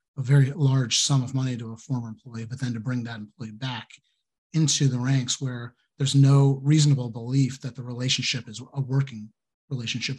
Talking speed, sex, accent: 190 wpm, male, American